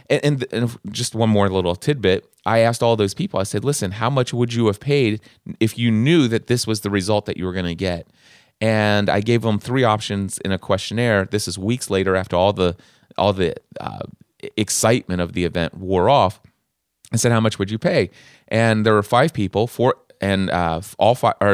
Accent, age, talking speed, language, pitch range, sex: American, 30-49, 215 wpm, English, 95-115 Hz, male